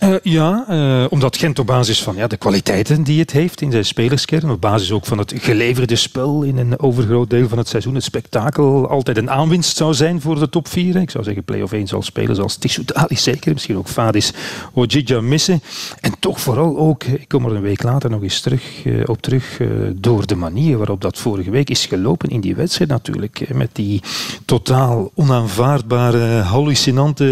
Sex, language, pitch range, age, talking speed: male, Dutch, 115-150 Hz, 40-59, 210 wpm